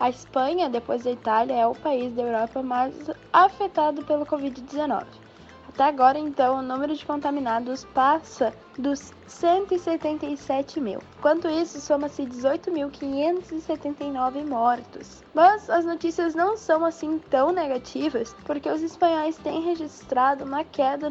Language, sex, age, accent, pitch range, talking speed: Portuguese, female, 10-29, Brazilian, 255-315 Hz, 130 wpm